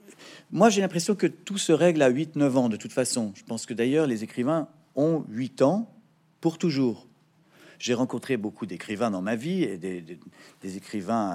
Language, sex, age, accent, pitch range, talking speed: French, male, 40-59, French, 110-160 Hz, 195 wpm